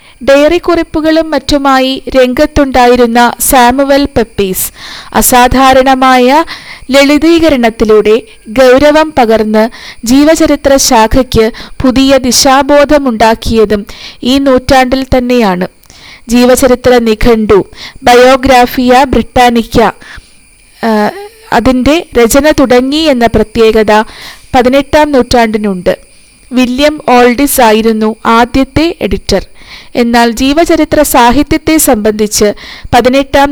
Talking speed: 70 wpm